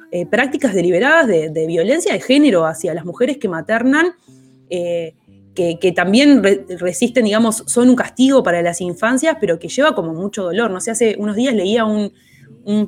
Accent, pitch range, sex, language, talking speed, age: Argentinian, 175-235 Hz, female, Spanish, 190 wpm, 20-39